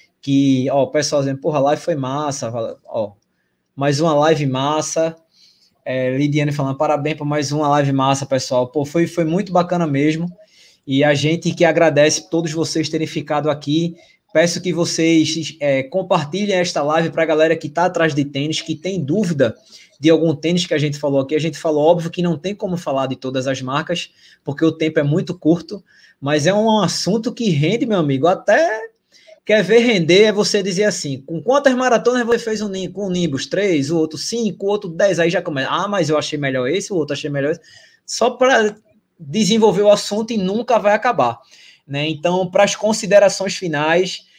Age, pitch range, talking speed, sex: 20-39, 150-195 Hz, 195 wpm, male